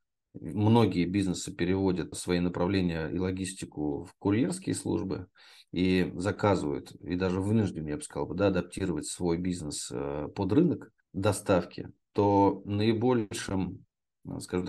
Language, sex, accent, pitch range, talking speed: Russian, male, native, 90-100 Hz, 115 wpm